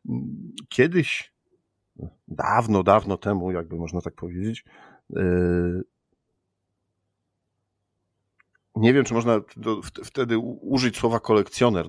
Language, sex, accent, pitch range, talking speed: Polish, male, native, 90-110 Hz, 80 wpm